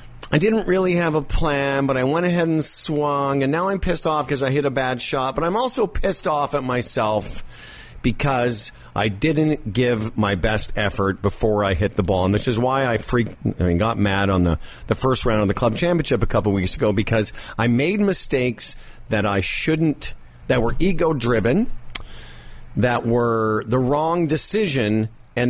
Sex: male